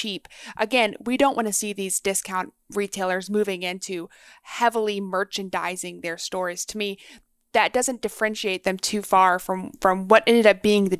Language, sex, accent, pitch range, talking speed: English, female, American, 185-220 Hz, 170 wpm